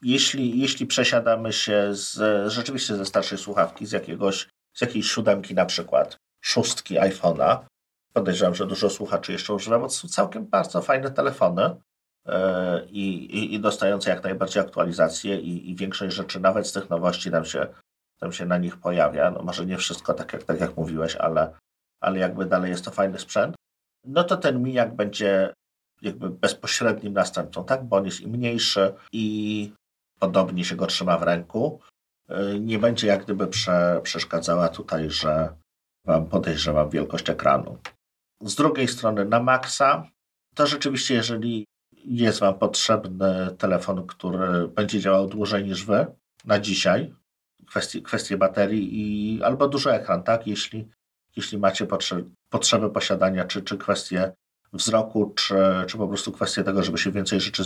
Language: Polish